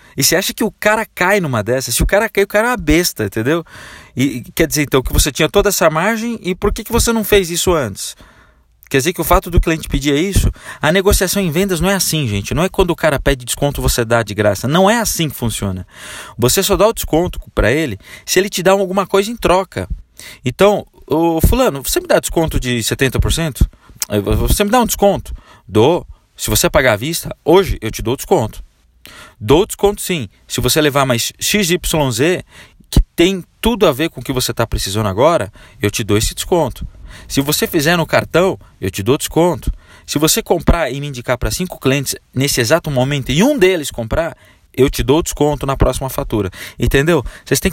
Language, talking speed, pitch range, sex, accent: Portuguese, 215 wpm, 120-185 Hz, male, Brazilian